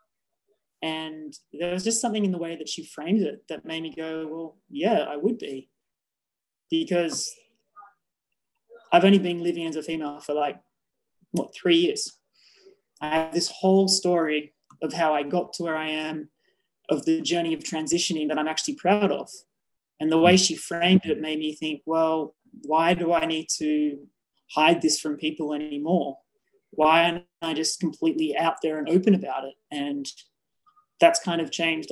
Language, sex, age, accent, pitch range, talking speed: English, male, 20-39, Australian, 155-195 Hz, 175 wpm